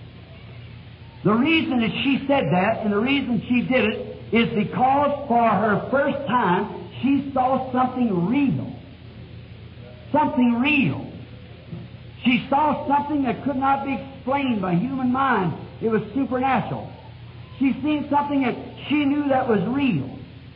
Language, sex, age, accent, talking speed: English, male, 50-69, American, 135 wpm